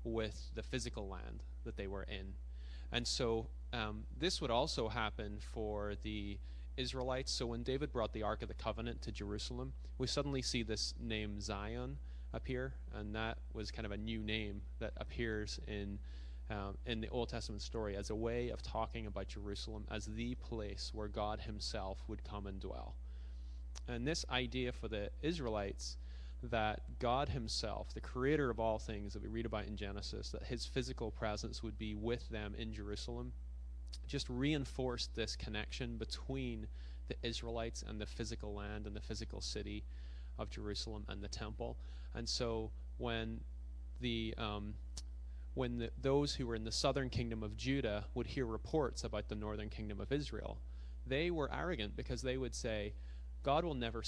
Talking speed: 170 wpm